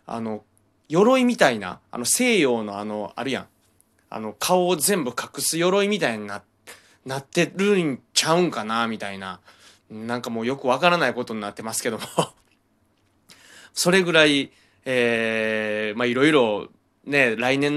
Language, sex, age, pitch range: Japanese, male, 20-39, 105-140 Hz